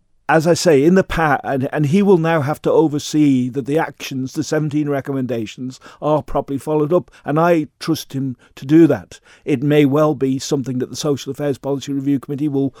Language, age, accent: English, 50-69, British